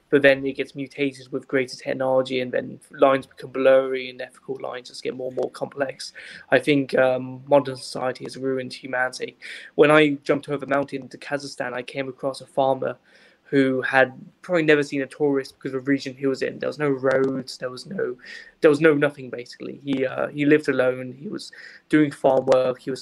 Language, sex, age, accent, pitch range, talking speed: English, male, 20-39, British, 130-140 Hz, 210 wpm